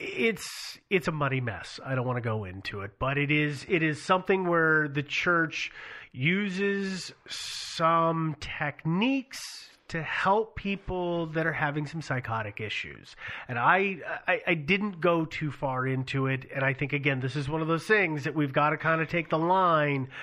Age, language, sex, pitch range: 30-49, English, male, 140-195 Hz